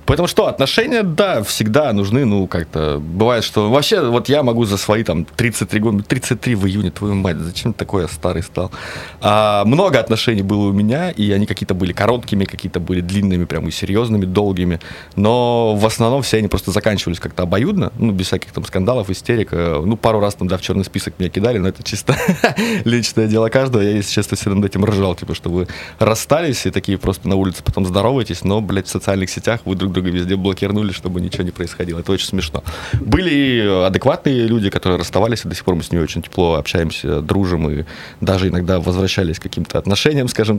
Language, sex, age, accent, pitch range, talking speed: Russian, male, 20-39, native, 90-115 Hz, 205 wpm